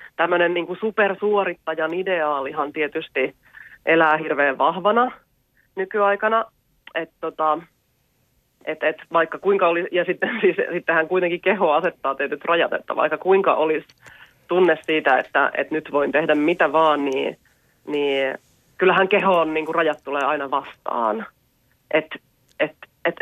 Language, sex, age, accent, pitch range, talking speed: Finnish, female, 30-49, native, 150-175 Hz, 130 wpm